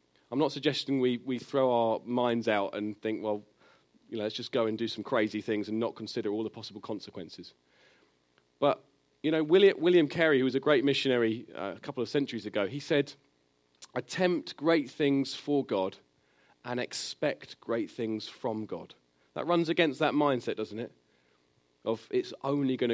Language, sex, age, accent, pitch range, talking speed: English, male, 40-59, British, 110-160 Hz, 185 wpm